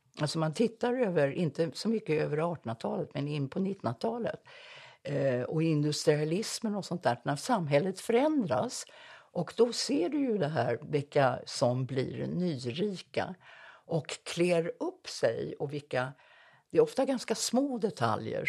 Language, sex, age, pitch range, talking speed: Swedish, female, 60-79, 145-230 Hz, 145 wpm